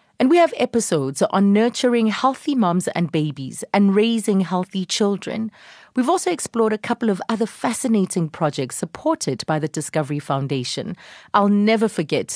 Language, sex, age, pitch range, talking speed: English, female, 30-49, 160-230 Hz, 150 wpm